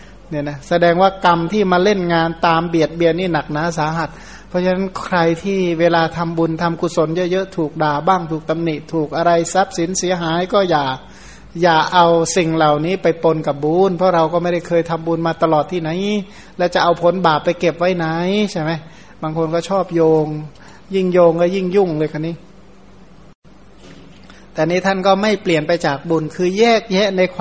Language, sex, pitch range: Thai, male, 155-180 Hz